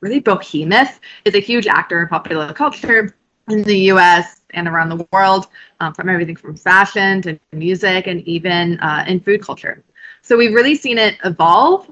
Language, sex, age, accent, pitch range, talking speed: English, female, 20-39, American, 175-240 Hz, 175 wpm